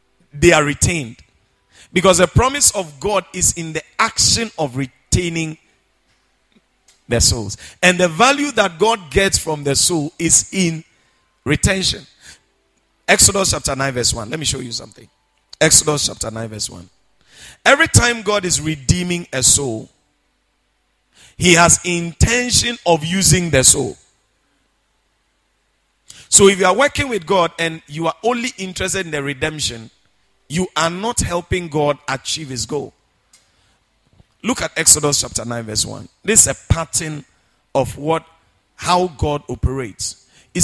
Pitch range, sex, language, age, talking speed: 125-180 Hz, male, English, 50-69, 145 wpm